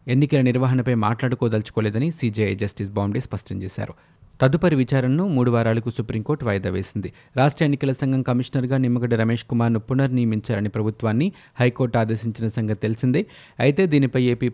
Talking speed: 130 wpm